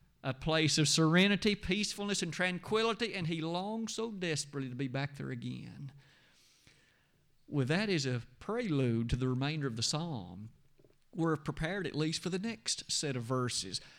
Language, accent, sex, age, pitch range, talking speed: English, American, male, 50-69, 130-180 Hz, 165 wpm